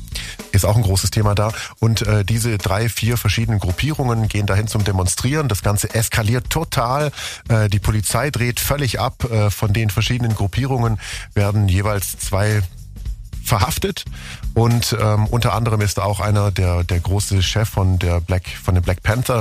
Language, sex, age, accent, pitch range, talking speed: German, male, 40-59, German, 95-115 Hz, 160 wpm